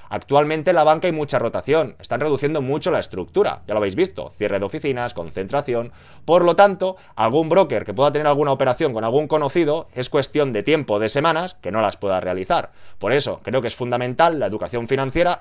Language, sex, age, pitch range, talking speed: Spanish, male, 30-49, 120-155 Hz, 205 wpm